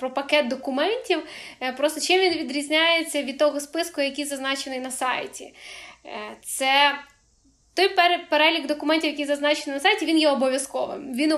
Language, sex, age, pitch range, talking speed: Ukrainian, female, 10-29, 270-310 Hz, 140 wpm